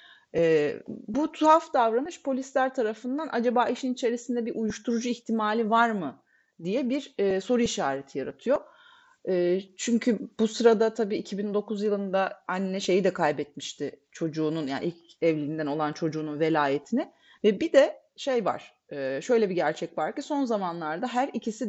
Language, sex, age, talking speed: Turkish, female, 30-49, 145 wpm